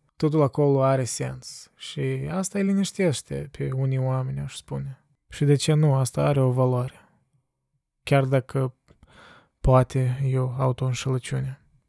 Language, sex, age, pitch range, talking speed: Romanian, male, 20-39, 130-150 Hz, 130 wpm